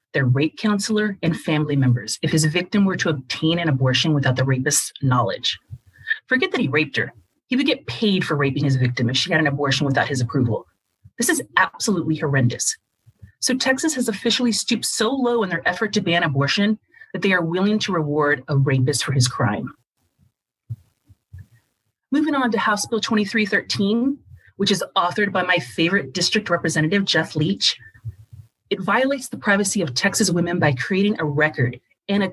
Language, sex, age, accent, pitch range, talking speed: English, female, 30-49, American, 140-210 Hz, 180 wpm